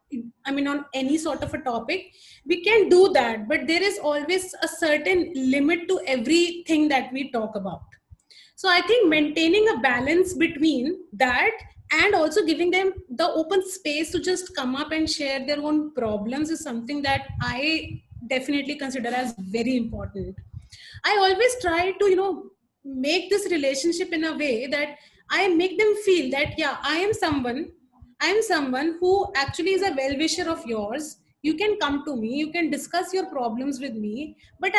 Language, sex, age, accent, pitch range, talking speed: English, female, 20-39, Indian, 275-370 Hz, 180 wpm